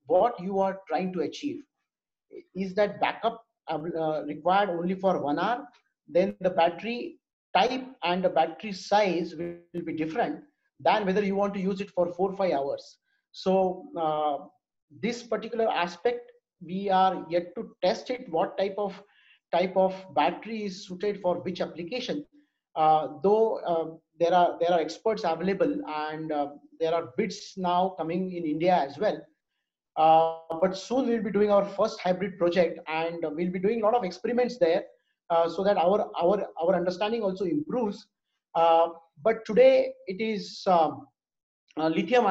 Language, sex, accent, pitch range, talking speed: English, male, Indian, 165-215 Hz, 165 wpm